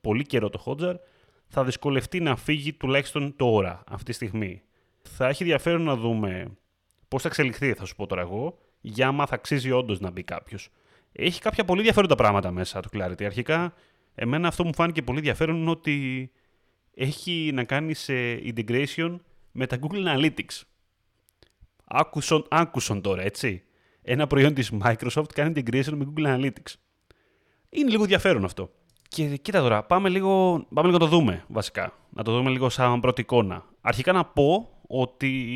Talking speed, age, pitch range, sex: 170 wpm, 30-49, 110-155 Hz, male